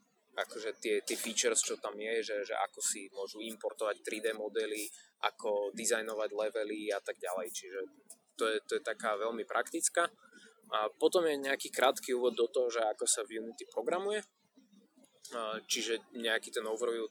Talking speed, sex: 170 wpm, male